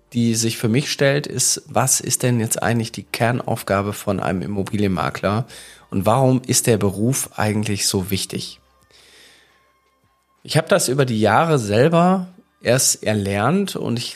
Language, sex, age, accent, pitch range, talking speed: German, male, 40-59, German, 105-130 Hz, 150 wpm